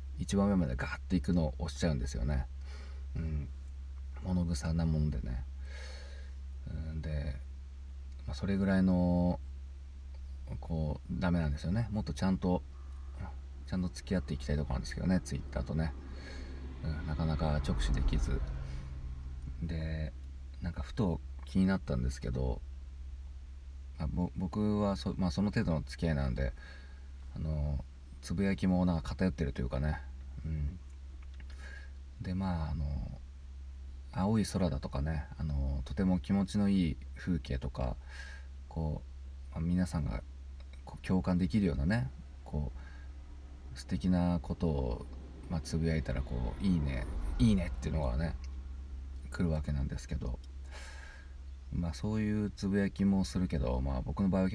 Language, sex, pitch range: Japanese, male, 65-85 Hz